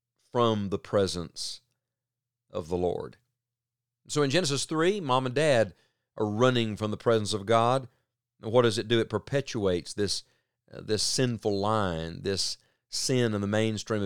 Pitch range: 100-125 Hz